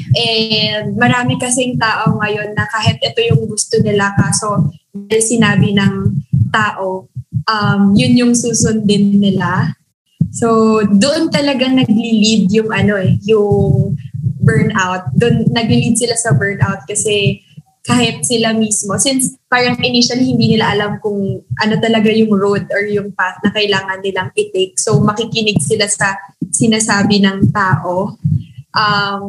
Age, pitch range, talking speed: 20-39, 185-230 Hz, 130 wpm